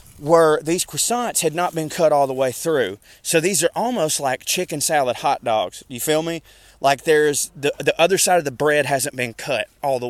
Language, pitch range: English, 130-165 Hz